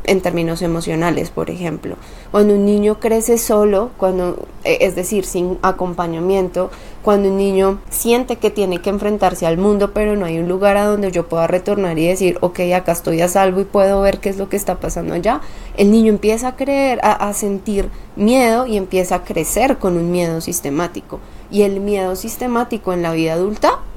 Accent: Colombian